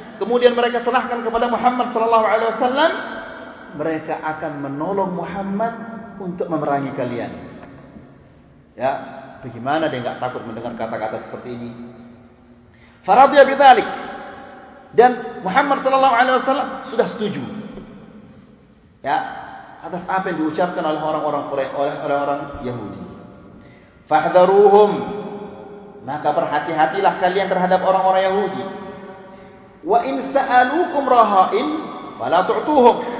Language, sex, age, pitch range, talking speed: Malay, male, 40-59, 155-230 Hz, 100 wpm